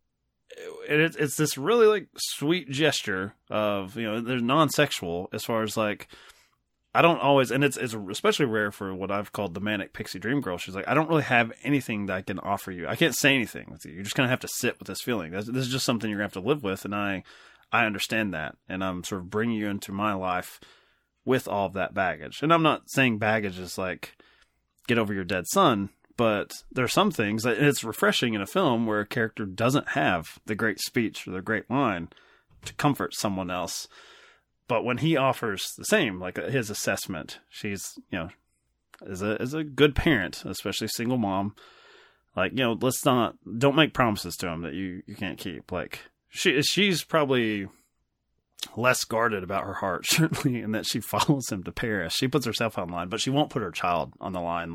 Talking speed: 220 wpm